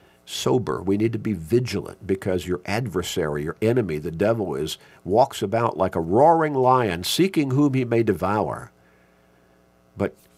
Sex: male